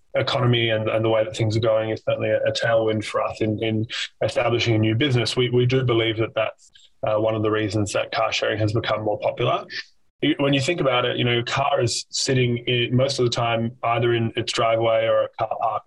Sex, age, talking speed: male, 20-39, 240 wpm